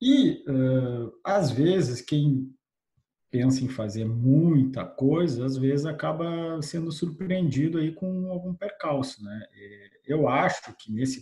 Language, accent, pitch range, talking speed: Portuguese, Brazilian, 110-155 Hz, 120 wpm